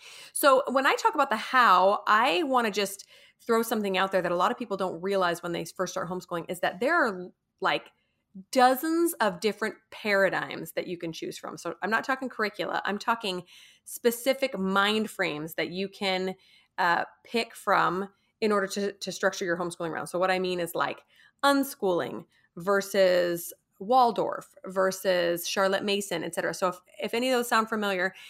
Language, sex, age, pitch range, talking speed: English, female, 30-49, 185-230 Hz, 185 wpm